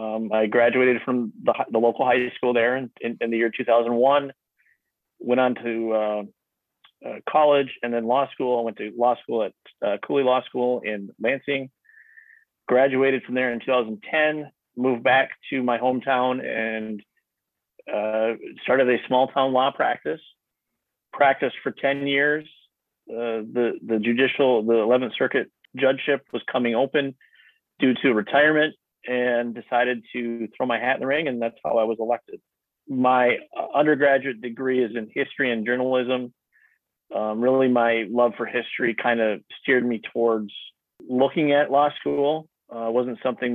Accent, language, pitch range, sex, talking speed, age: American, English, 115-130 Hz, male, 160 wpm, 30-49